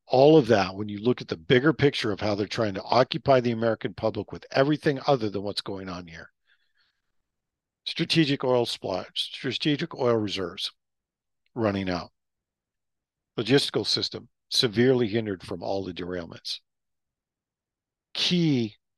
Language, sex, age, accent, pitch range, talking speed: English, male, 50-69, American, 100-130 Hz, 140 wpm